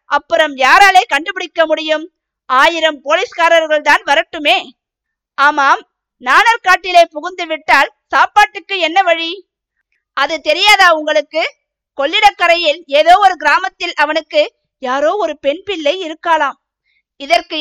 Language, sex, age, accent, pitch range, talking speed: Tamil, female, 50-69, native, 295-360 Hz, 100 wpm